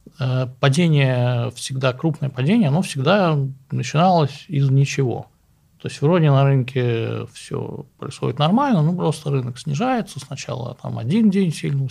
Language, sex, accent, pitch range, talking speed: Russian, male, native, 125-155 Hz, 135 wpm